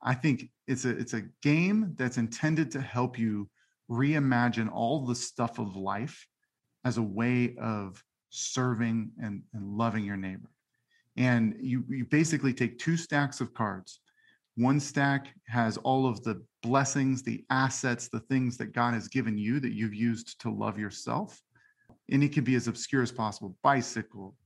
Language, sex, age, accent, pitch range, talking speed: English, male, 40-59, American, 115-135 Hz, 165 wpm